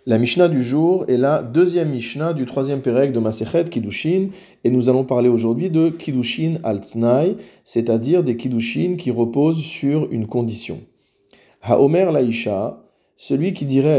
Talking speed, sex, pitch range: 155 wpm, male, 115-155 Hz